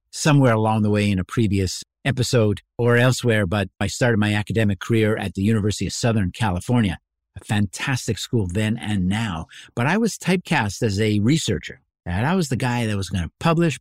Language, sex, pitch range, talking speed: English, male, 95-125 Hz, 190 wpm